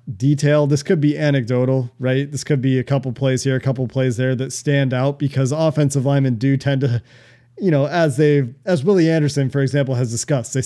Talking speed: 215 wpm